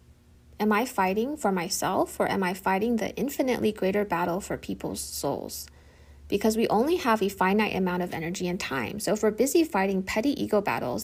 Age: 20-39